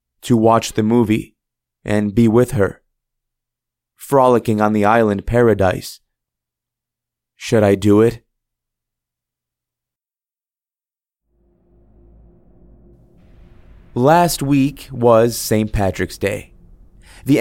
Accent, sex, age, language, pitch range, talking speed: American, male, 30-49, English, 95-125 Hz, 85 wpm